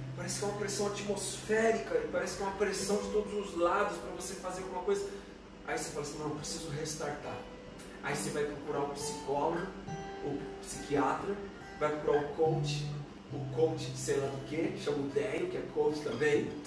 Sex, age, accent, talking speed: male, 40-59, Brazilian, 210 wpm